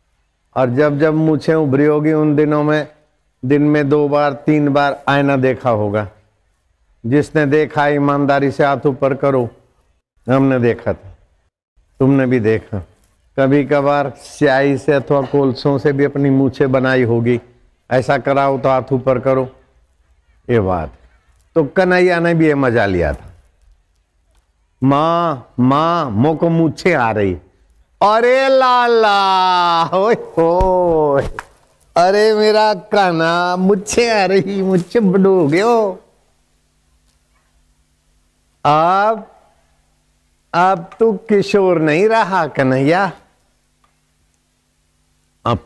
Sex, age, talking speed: male, 60-79, 115 wpm